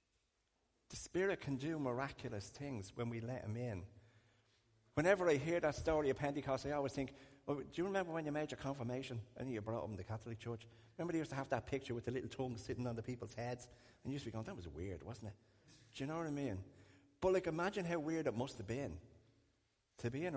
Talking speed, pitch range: 245 wpm, 105-135 Hz